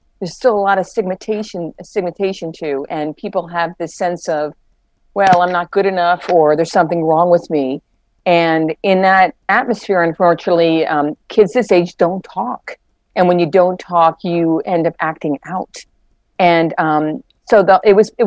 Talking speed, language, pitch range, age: 165 wpm, English, 165-195 Hz, 50-69